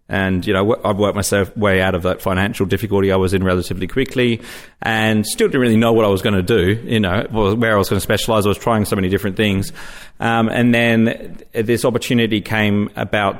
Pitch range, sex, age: 95-110 Hz, male, 30-49